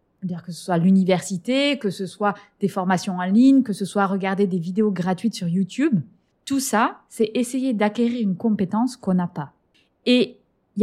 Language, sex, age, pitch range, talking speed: French, female, 20-39, 195-250 Hz, 185 wpm